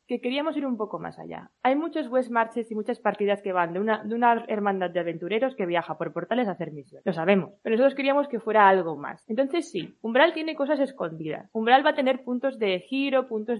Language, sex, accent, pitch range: Spanish, female, Spanish, 205-275 Hz